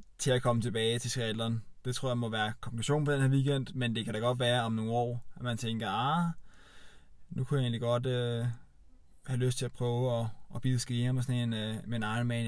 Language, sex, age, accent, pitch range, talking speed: Danish, male, 20-39, native, 110-125 Hz, 225 wpm